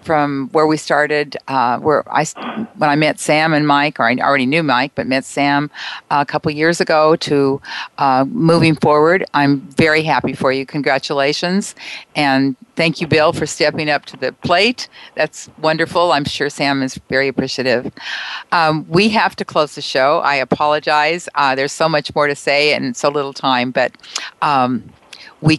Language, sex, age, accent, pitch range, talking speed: English, female, 50-69, American, 135-170 Hz, 175 wpm